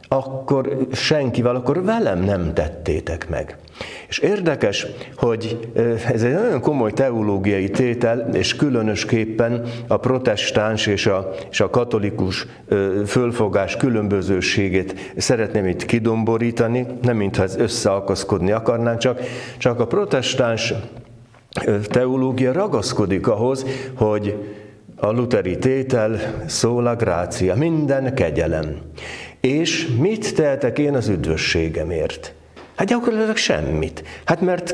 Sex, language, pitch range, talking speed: male, Hungarian, 100-135 Hz, 105 wpm